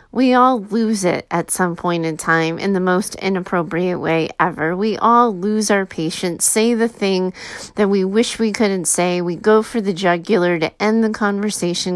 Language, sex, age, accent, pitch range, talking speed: English, female, 30-49, American, 185-225 Hz, 190 wpm